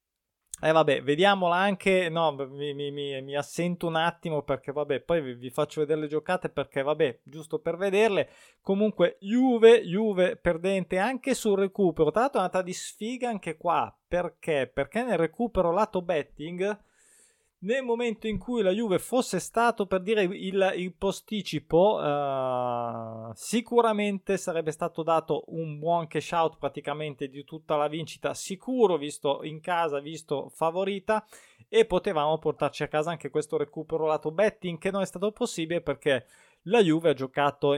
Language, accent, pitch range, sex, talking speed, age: Italian, native, 150-195 Hz, male, 160 wpm, 20-39